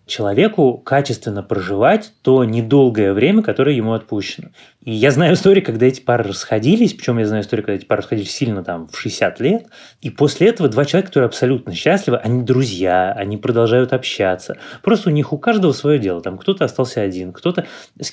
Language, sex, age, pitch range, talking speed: Russian, male, 20-39, 110-140 Hz, 185 wpm